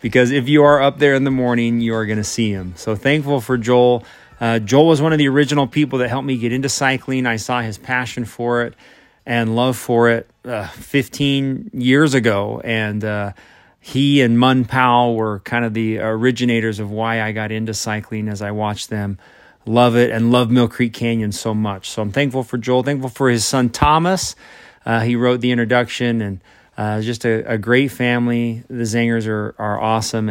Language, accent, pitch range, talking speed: English, American, 115-145 Hz, 205 wpm